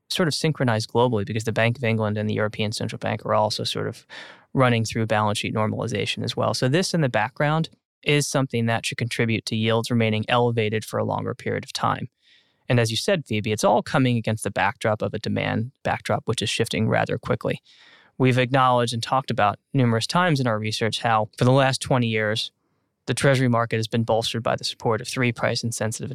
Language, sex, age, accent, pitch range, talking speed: English, male, 20-39, American, 115-135 Hz, 215 wpm